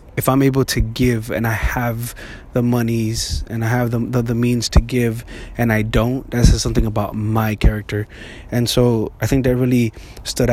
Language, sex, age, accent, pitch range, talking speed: English, male, 20-39, American, 110-125 Hz, 200 wpm